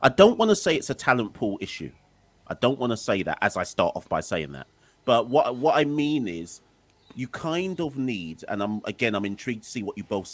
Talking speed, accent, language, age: 250 wpm, British, English, 30-49